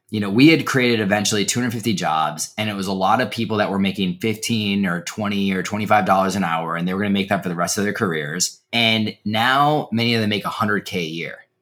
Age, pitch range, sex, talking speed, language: 20-39, 100-130 Hz, male, 245 wpm, English